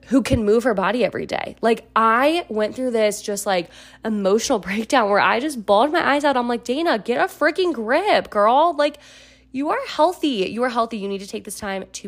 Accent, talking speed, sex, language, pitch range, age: American, 225 wpm, female, English, 185-235 Hz, 20-39